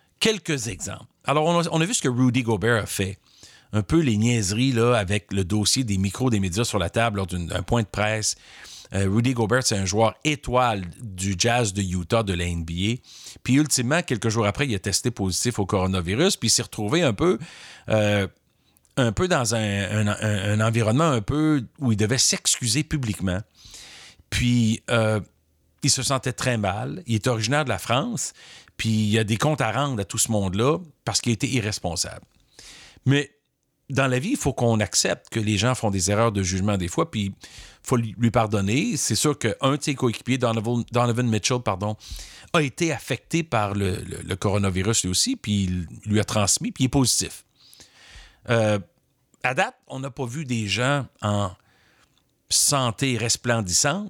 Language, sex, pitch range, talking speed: French, male, 100-130 Hz, 185 wpm